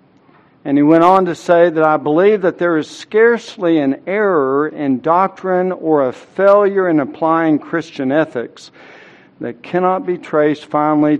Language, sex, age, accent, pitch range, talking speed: English, male, 60-79, American, 135-170 Hz, 155 wpm